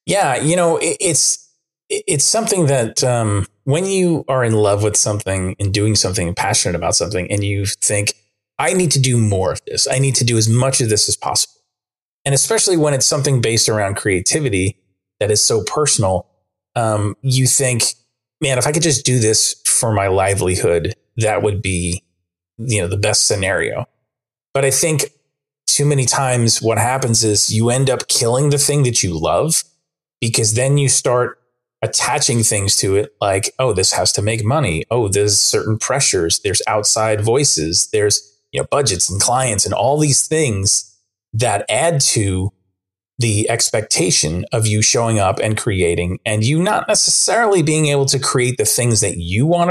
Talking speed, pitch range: 180 wpm, 105-140 Hz